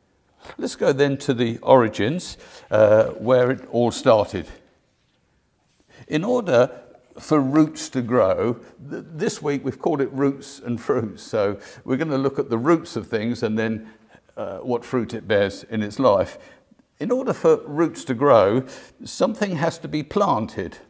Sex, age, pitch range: male, 50-69, 120-160 Hz